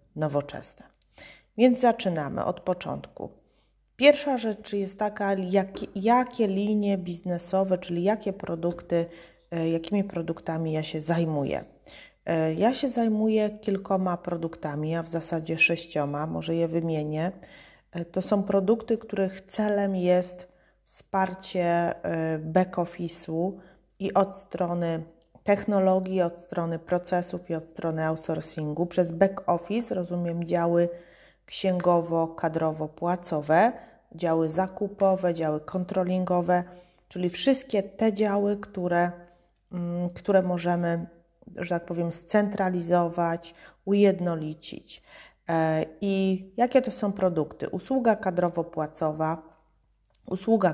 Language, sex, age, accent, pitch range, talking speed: Polish, female, 30-49, native, 165-195 Hz, 100 wpm